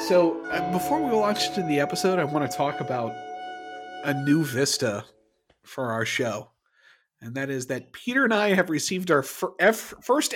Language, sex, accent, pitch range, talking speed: English, male, American, 125-185 Hz, 185 wpm